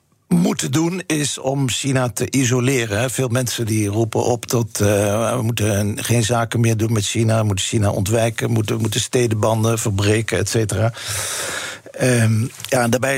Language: Dutch